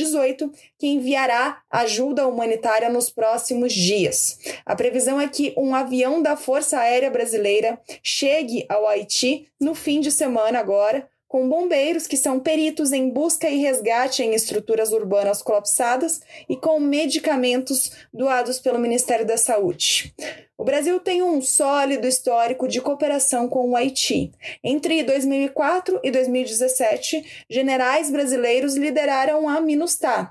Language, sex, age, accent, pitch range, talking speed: Portuguese, female, 20-39, Brazilian, 230-285 Hz, 130 wpm